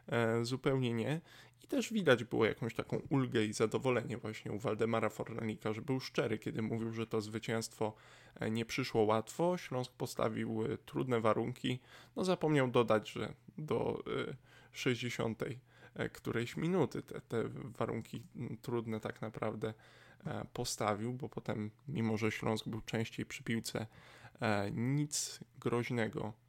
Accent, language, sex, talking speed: native, Polish, male, 125 wpm